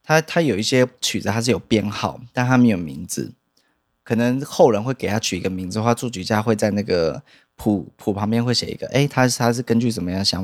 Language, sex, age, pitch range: Chinese, male, 20-39, 100-120 Hz